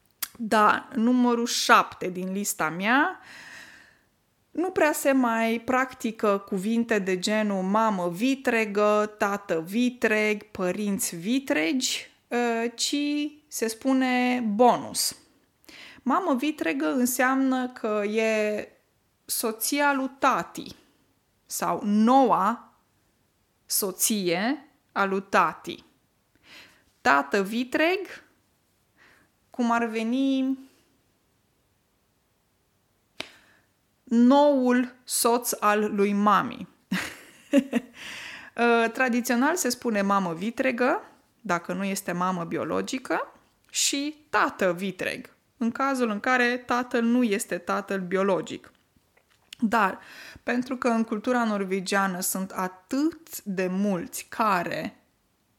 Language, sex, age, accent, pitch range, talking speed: Romanian, female, 20-39, native, 205-265 Hz, 85 wpm